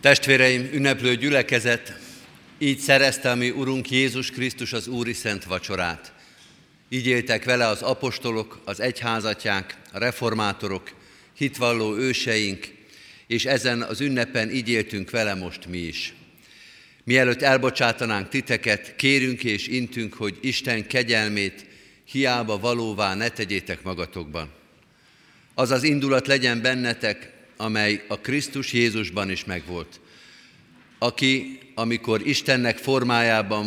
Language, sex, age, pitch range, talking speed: Hungarian, male, 50-69, 105-125 Hz, 110 wpm